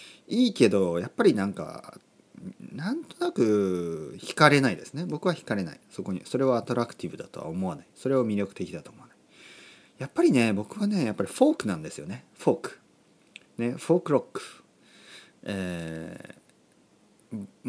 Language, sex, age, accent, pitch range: Japanese, male, 40-59, native, 95-160 Hz